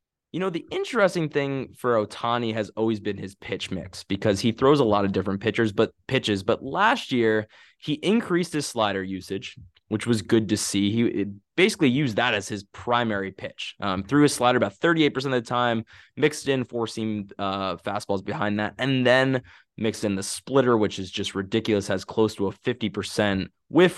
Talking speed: 195 wpm